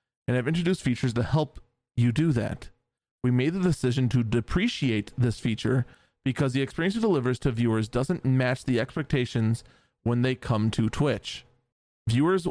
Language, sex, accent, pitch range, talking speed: English, male, American, 120-150 Hz, 165 wpm